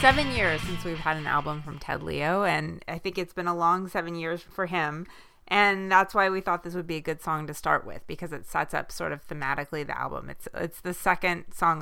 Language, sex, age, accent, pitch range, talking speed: English, female, 30-49, American, 160-190 Hz, 250 wpm